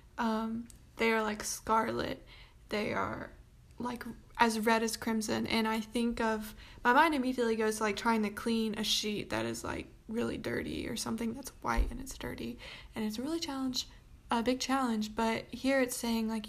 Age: 20-39